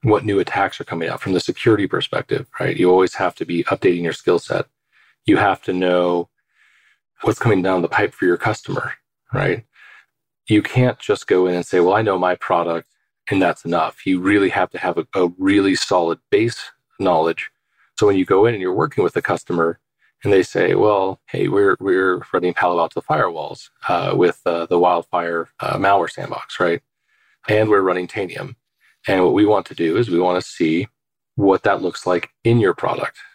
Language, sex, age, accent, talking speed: English, male, 30-49, American, 200 wpm